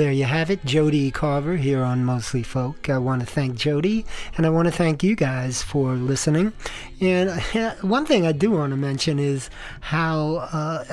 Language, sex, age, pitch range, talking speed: English, male, 40-59, 135-165 Hz, 200 wpm